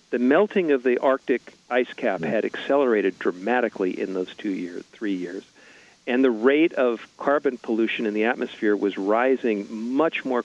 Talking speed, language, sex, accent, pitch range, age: 165 wpm, English, male, American, 115-150 Hz, 50-69